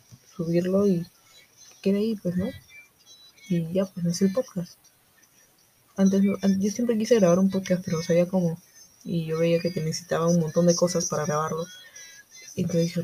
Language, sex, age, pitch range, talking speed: Spanish, female, 20-39, 165-190 Hz, 185 wpm